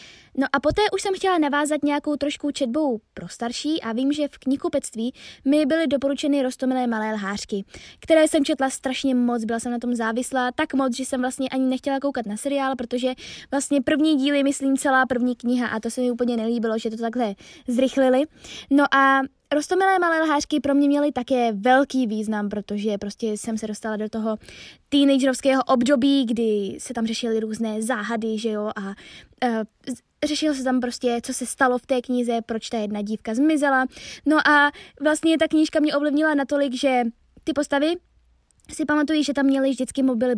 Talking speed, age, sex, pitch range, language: 185 wpm, 20-39, female, 230-285 Hz, Czech